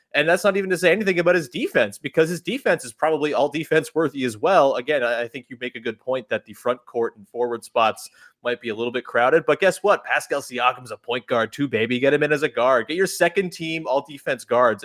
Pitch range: 110-150 Hz